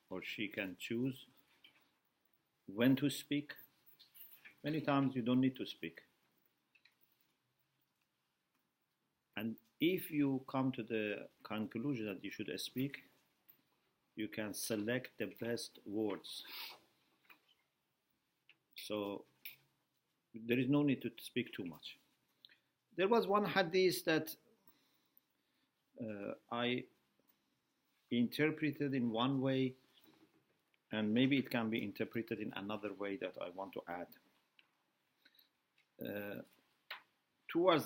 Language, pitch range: English, 110-140 Hz